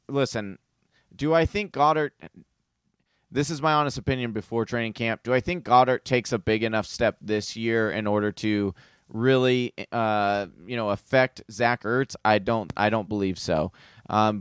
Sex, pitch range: male, 105-130 Hz